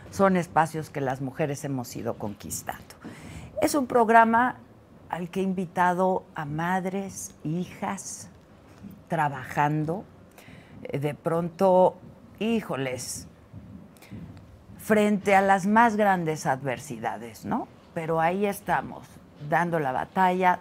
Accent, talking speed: Mexican, 100 wpm